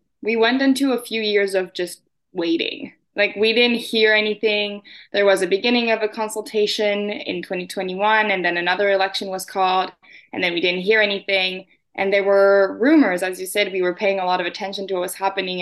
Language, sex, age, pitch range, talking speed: English, female, 10-29, 190-230 Hz, 205 wpm